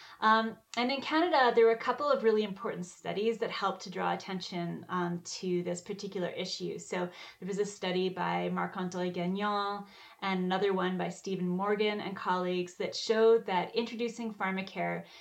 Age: 30-49